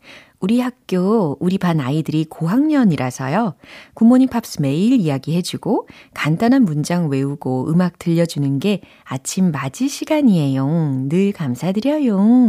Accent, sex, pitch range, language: native, female, 140-195 Hz, Korean